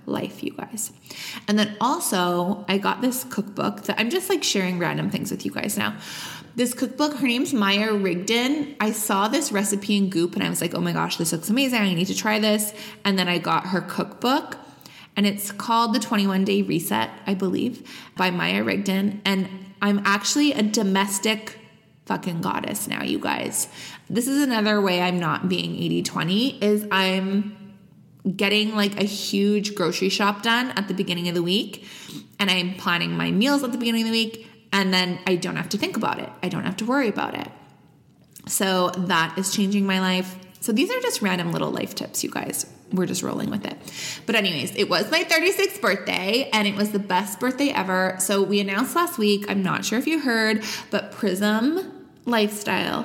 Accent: American